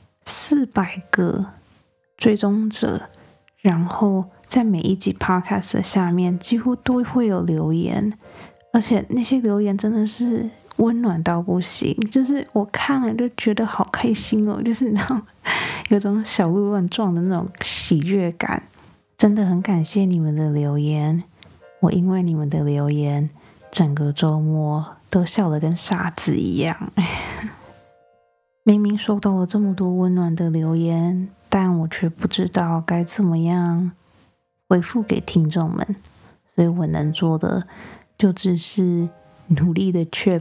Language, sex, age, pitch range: Chinese, female, 20-39, 165-205 Hz